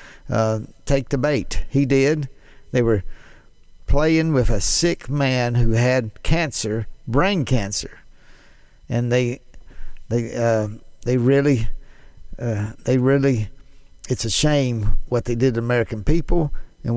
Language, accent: English, American